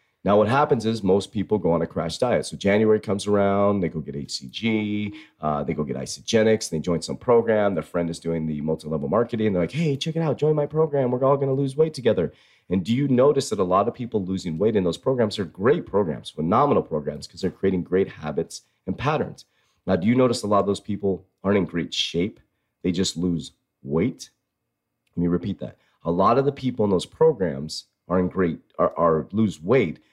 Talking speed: 225 wpm